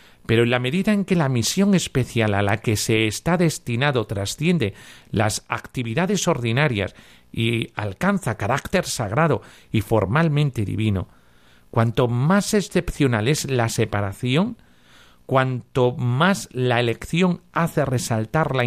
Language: Spanish